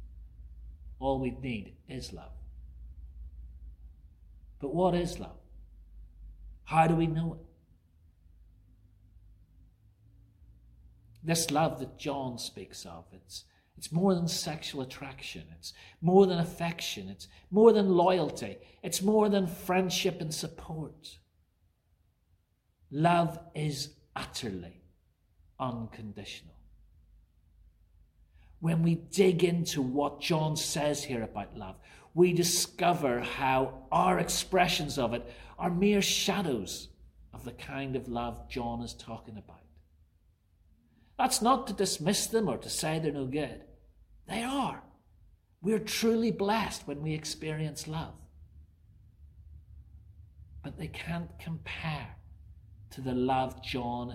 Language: English